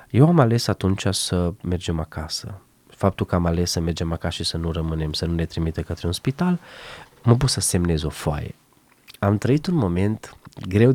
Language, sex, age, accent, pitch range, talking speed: Romanian, male, 20-39, native, 85-105 Hz, 205 wpm